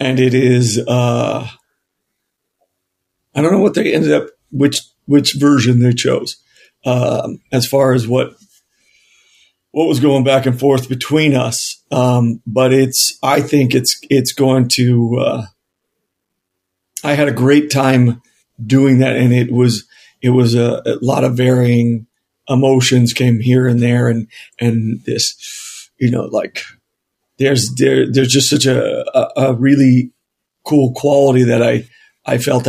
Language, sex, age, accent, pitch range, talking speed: English, male, 50-69, American, 120-135 Hz, 150 wpm